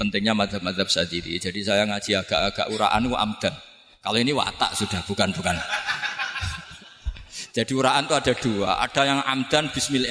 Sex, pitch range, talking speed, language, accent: male, 100-145 Hz, 135 wpm, Indonesian, native